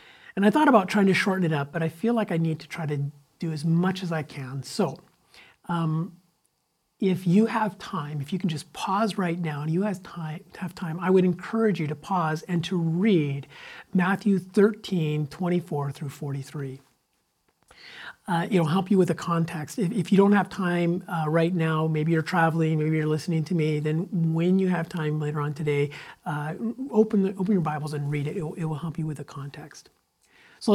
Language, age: English, 50-69